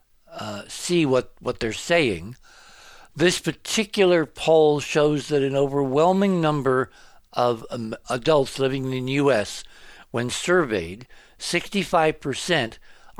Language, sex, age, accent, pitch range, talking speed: English, male, 60-79, American, 115-145 Hz, 110 wpm